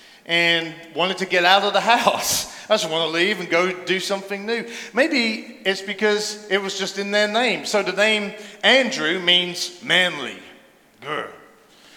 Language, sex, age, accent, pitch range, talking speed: English, male, 40-59, British, 160-210 Hz, 170 wpm